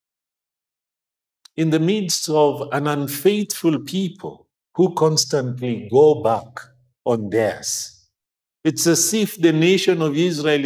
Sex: male